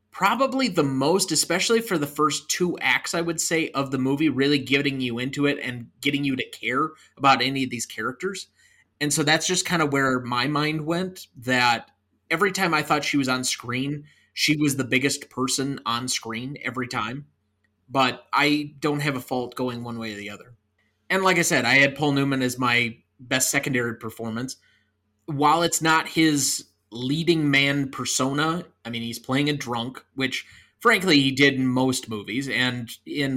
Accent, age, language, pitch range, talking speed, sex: American, 20-39, English, 125-150 Hz, 190 wpm, male